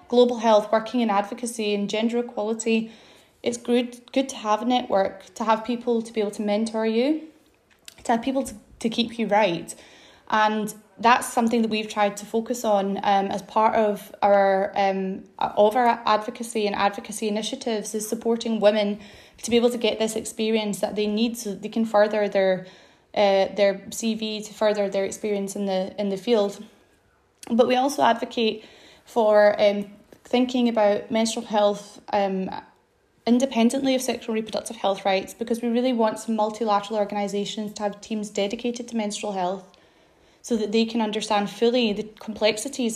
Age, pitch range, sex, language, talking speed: 20-39, 205-235 Hz, female, English, 170 wpm